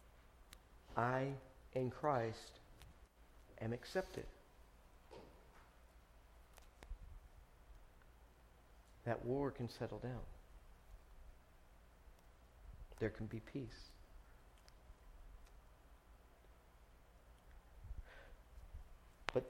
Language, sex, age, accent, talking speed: English, male, 50-69, American, 45 wpm